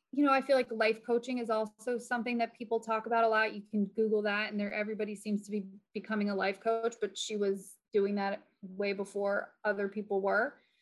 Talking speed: 220 wpm